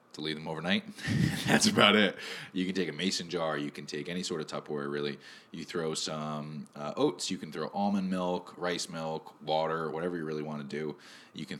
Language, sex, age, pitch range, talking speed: English, male, 20-39, 75-95 Hz, 215 wpm